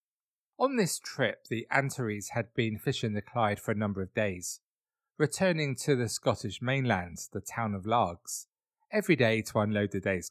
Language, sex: English, male